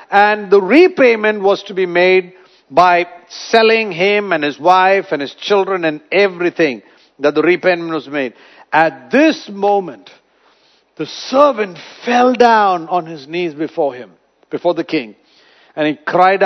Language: English